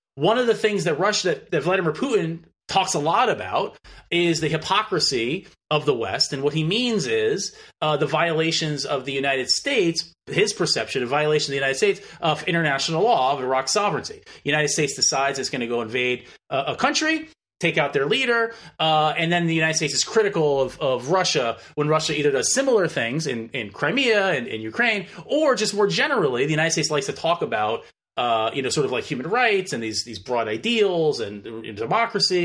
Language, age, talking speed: English, 30-49, 205 wpm